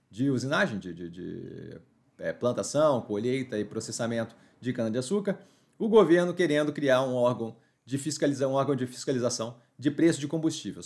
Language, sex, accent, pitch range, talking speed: Portuguese, male, Brazilian, 125-165 Hz, 155 wpm